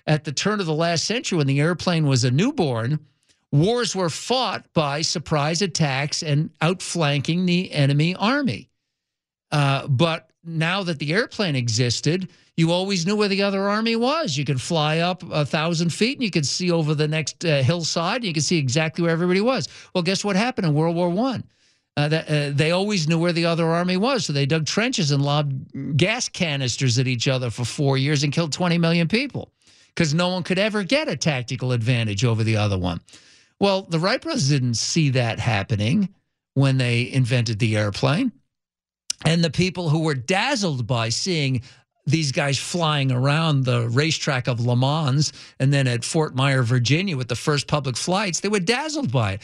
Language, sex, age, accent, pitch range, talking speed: English, male, 50-69, American, 135-185 Hz, 190 wpm